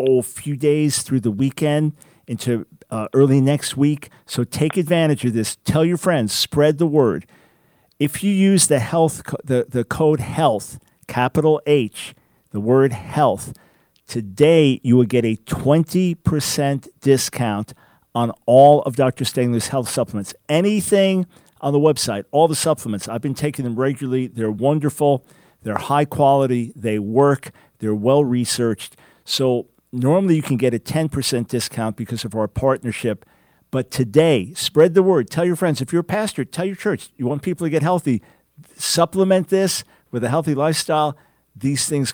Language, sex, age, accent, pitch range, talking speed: English, male, 50-69, American, 120-155 Hz, 160 wpm